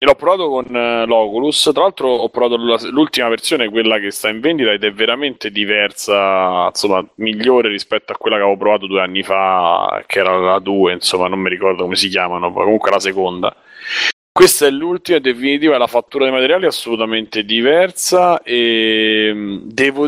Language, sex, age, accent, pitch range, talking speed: Italian, male, 30-49, native, 110-140 Hz, 175 wpm